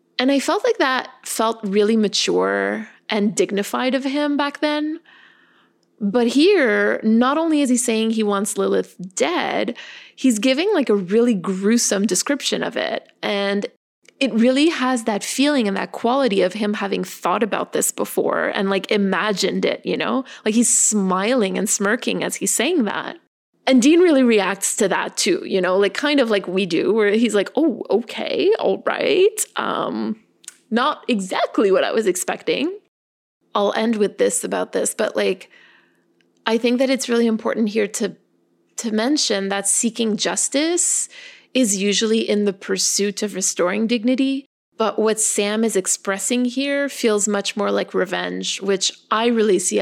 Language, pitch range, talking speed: English, 200-265 Hz, 165 wpm